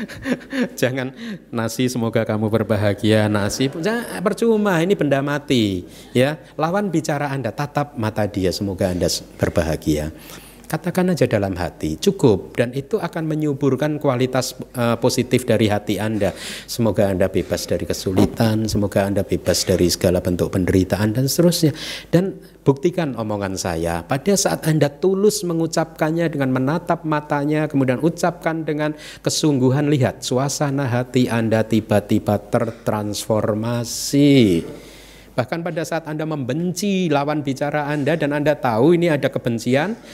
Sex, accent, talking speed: male, native, 130 wpm